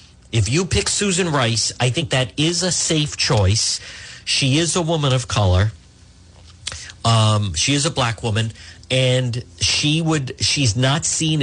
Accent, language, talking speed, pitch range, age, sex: American, English, 160 wpm, 95-130 Hz, 50-69, male